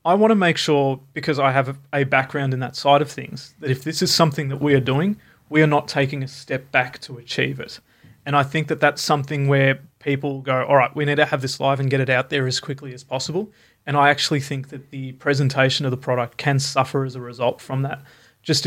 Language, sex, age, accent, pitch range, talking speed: English, male, 30-49, Australian, 130-145 Hz, 250 wpm